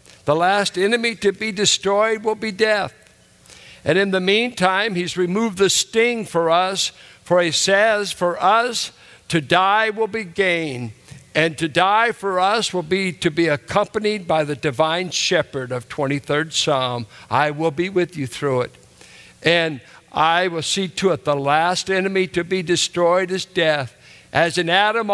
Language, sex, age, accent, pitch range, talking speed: English, male, 60-79, American, 135-195 Hz, 165 wpm